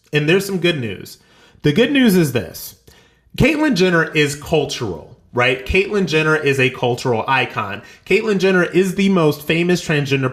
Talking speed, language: 165 wpm, English